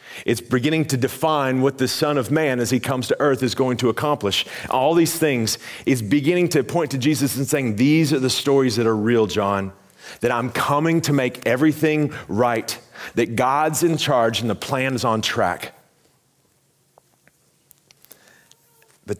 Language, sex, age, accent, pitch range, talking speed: English, male, 40-59, American, 100-135 Hz, 170 wpm